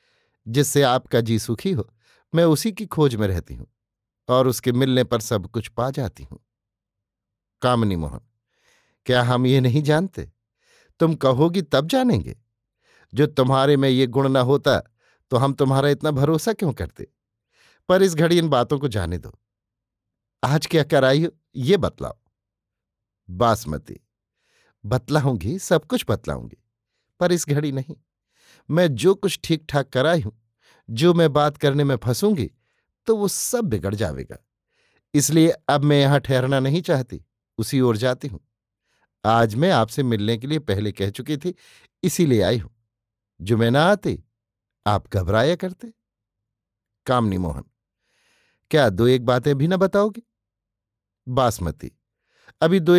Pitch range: 110-150 Hz